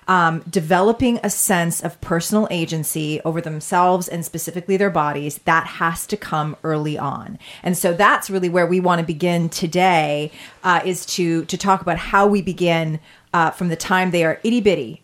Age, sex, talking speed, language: 30-49, female, 180 wpm, English